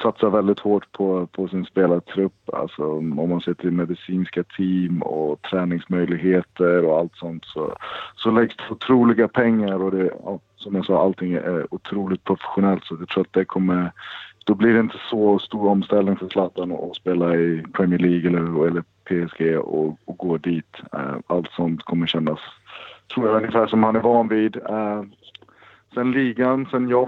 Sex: male